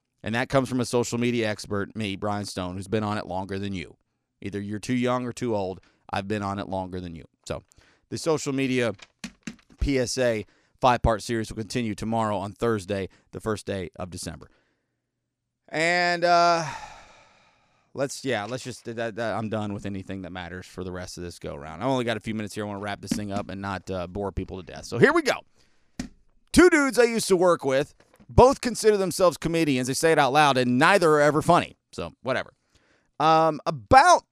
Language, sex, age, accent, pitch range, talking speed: English, male, 30-49, American, 105-165 Hz, 205 wpm